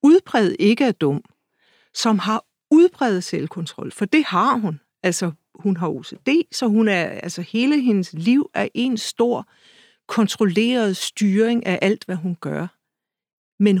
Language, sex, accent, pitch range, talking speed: Danish, female, native, 185-235 Hz, 135 wpm